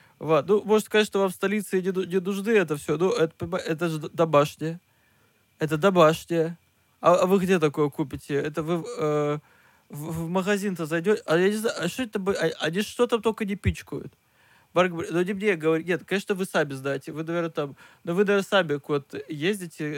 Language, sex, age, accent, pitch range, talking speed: Russian, male, 20-39, native, 155-200 Hz, 190 wpm